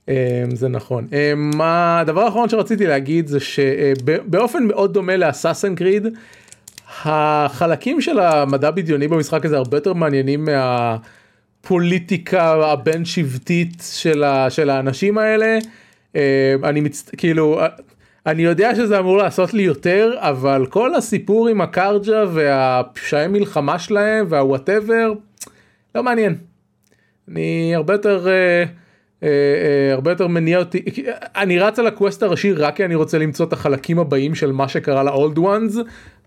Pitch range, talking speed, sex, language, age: 140-200 Hz, 135 wpm, male, Hebrew, 30-49